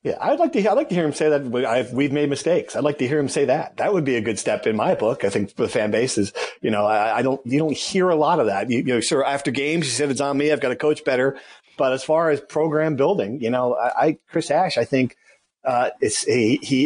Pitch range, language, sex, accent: 130-160 Hz, English, male, American